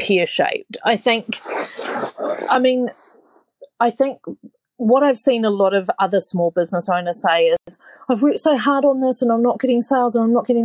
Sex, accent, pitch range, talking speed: female, Australian, 180-240 Hz, 195 wpm